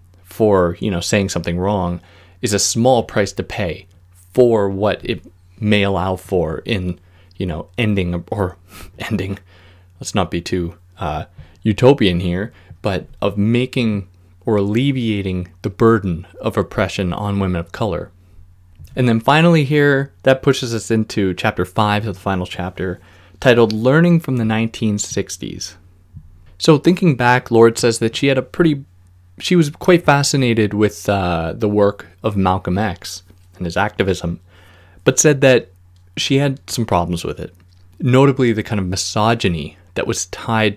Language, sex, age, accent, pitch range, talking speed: English, male, 20-39, American, 90-115 Hz, 155 wpm